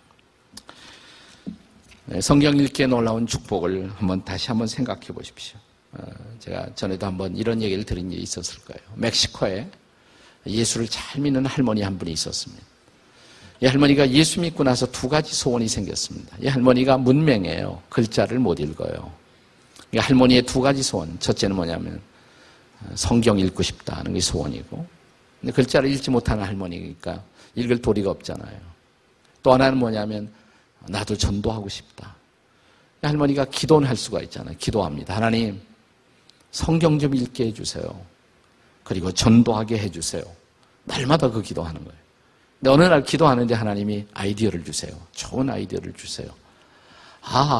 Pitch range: 100-130 Hz